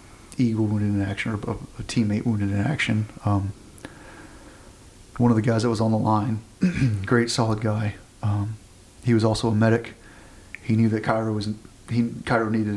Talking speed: 175 wpm